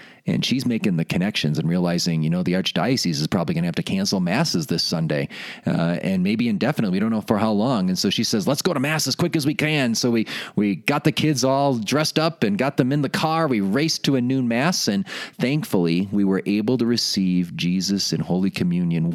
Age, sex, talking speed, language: 30-49, male, 240 wpm, English